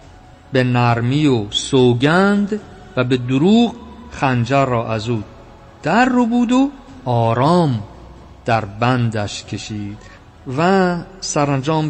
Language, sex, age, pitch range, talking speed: Persian, male, 50-69, 120-190 Hz, 100 wpm